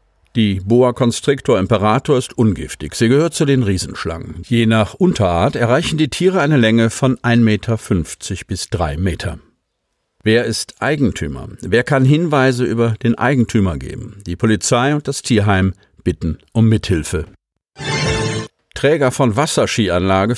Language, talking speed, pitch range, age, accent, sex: German, 135 wpm, 95-125 Hz, 50-69, German, male